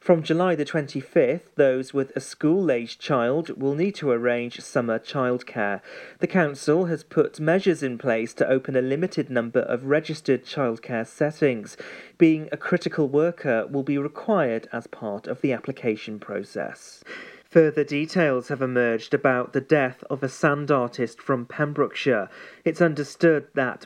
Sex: male